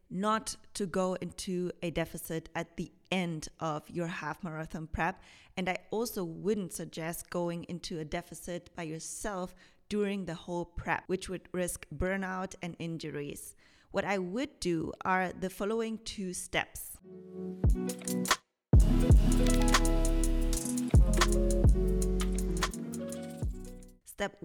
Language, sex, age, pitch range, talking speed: English, female, 30-49, 165-195 Hz, 110 wpm